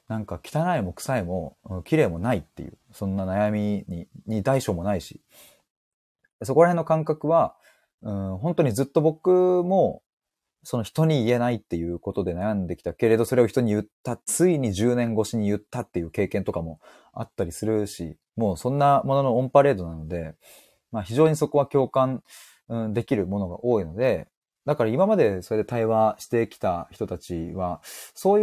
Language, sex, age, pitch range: Japanese, male, 20-39, 95-145 Hz